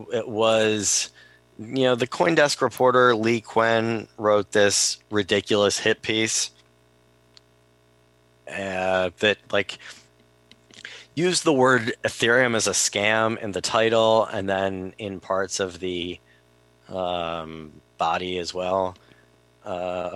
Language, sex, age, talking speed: English, male, 30-49, 115 wpm